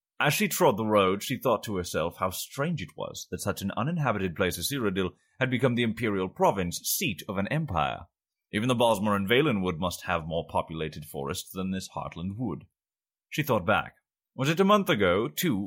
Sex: male